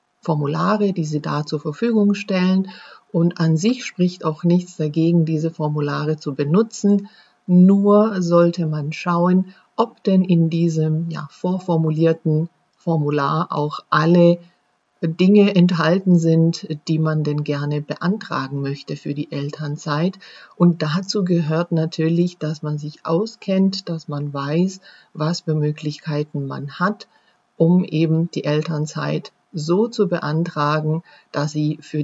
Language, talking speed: German, 130 wpm